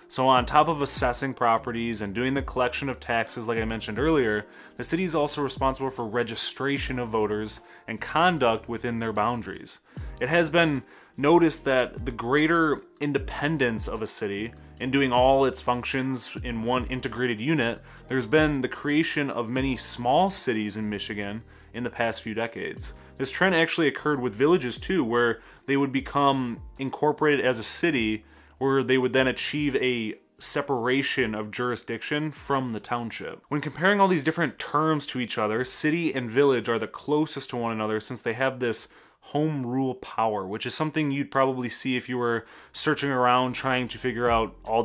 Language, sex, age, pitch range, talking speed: English, male, 20-39, 115-140 Hz, 180 wpm